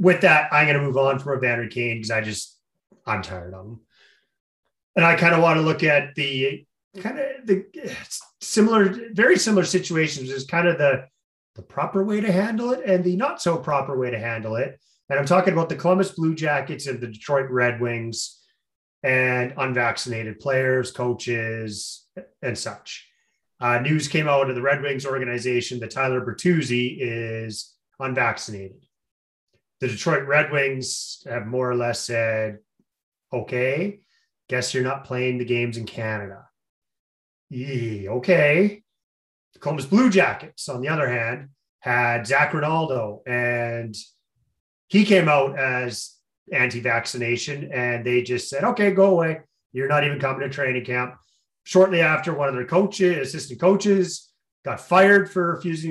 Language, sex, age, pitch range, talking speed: English, male, 30-49, 120-170 Hz, 160 wpm